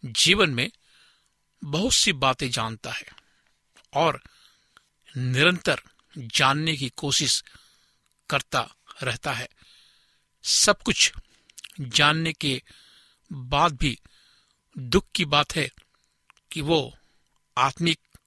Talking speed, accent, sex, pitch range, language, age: 90 wpm, native, male, 135-175 Hz, Hindi, 60-79